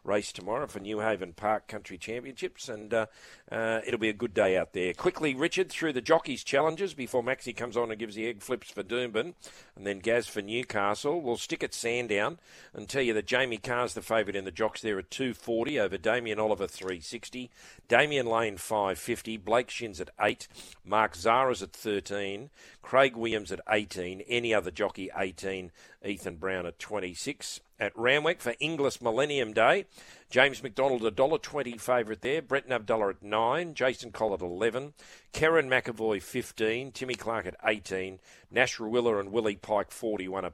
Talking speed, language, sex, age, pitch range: 180 wpm, English, male, 40-59, 100-125 Hz